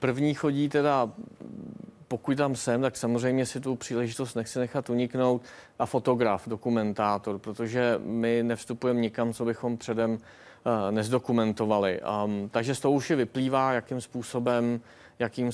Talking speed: 125 wpm